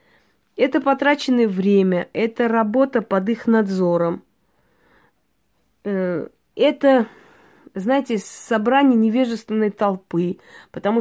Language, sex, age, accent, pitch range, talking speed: Russian, female, 30-49, native, 195-250 Hz, 75 wpm